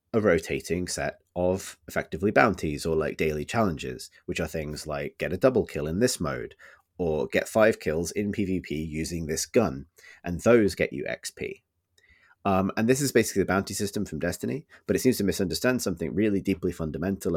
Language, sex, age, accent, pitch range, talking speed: English, male, 30-49, British, 80-100 Hz, 185 wpm